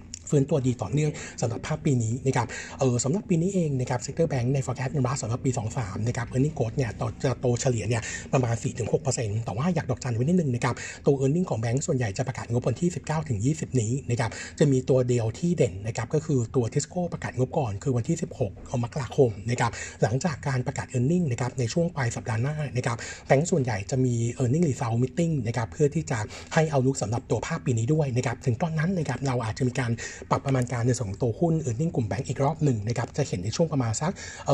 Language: Thai